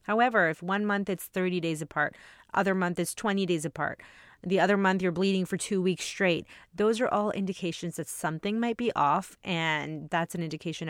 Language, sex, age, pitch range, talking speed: English, female, 30-49, 160-200 Hz, 200 wpm